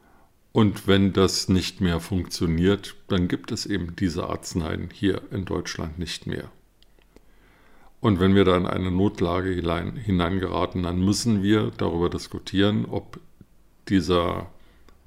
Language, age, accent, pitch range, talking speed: German, 50-69, German, 90-100 Hz, 130 wpm